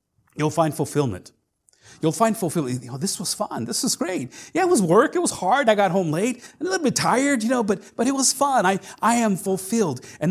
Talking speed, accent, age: 245 wpm, American, 40-59